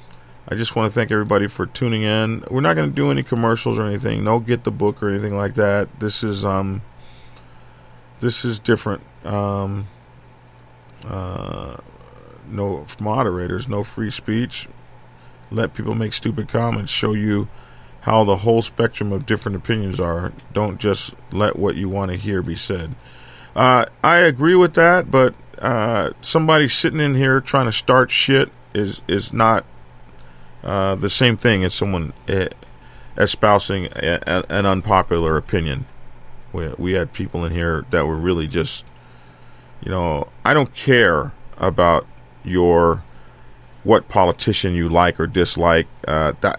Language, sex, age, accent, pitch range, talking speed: English, male, 40-59, American, 90-120 Hz, 150 wpm